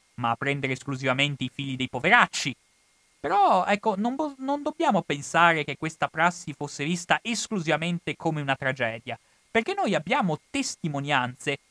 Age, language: 30-49, Italian